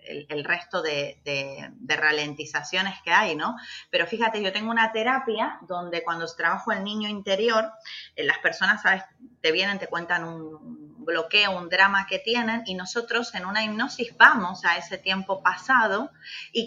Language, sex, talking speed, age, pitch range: Spanish, female, 155 wpm, 30-49, 175-235 Hz